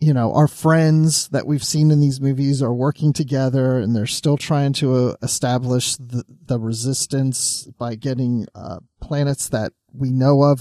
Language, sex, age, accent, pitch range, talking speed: English, male, 40-59, American, 130-165 Hz, 170 wpm